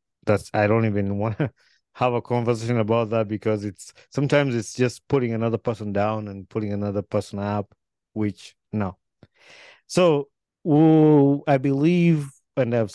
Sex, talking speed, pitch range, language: male, 145 wpm, 100-120 Hz, English